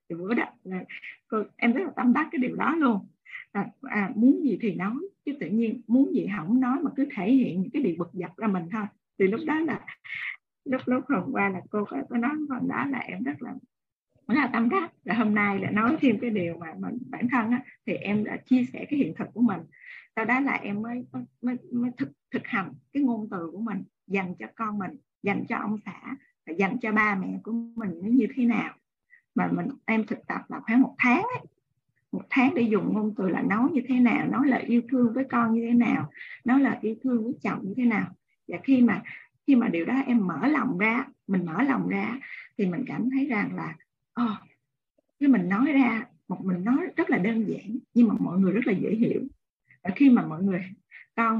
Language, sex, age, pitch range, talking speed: Vietnamese, female, 20-39, 210-265 Hz, 230 wpm